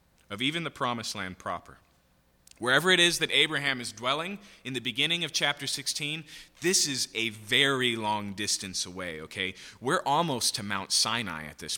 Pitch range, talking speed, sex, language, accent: 105-160 Hz, 175 wpm, male, English, American